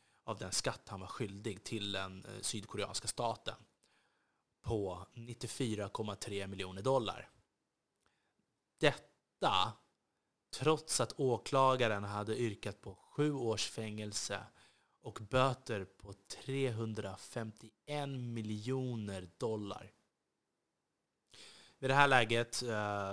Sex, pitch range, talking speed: male, 100-125 Hz, 90 wpm